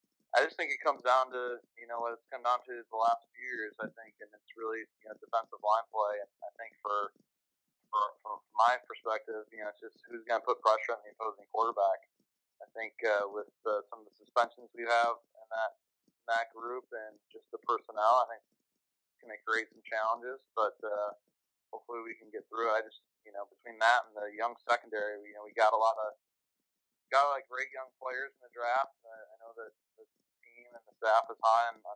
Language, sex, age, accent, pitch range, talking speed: English, male, 30-49, American, 105-120 Hz, 220 wpm